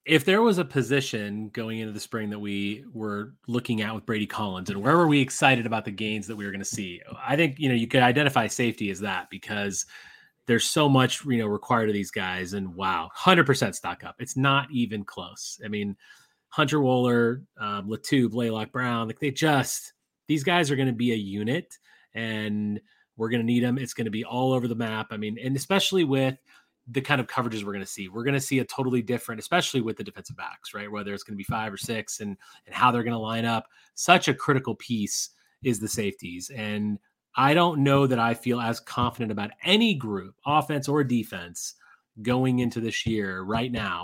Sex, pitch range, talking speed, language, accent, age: male, 105-135 Hz, 215 wpm, English, American, 30-49